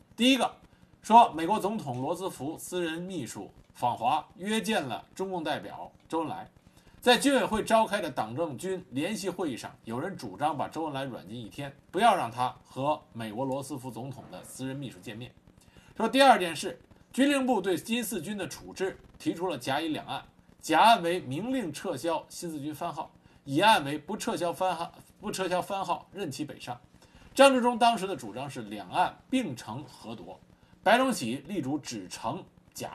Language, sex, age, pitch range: Chinese, male, 50-69, 140-225 Hz